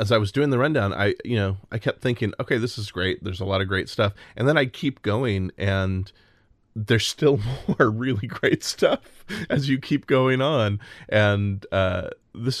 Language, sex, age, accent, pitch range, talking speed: English, male, 20-39, American, 95-115 Hz, 200 wpm